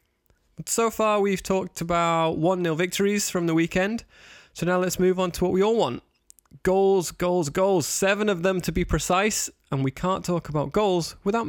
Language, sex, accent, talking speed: English, male, British, 190 wpm